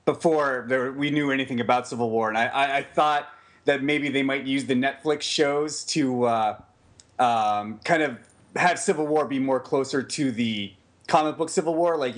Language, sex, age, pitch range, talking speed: English, male, 30-49, 110-135 Hz, 190 wpm